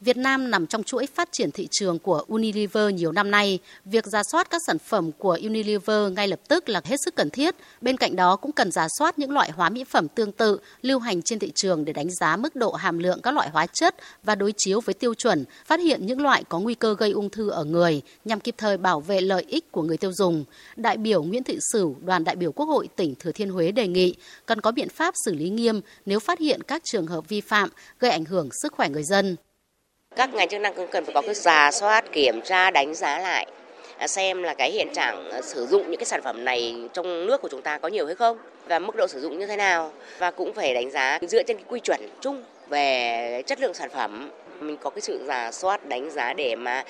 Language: Vietnamese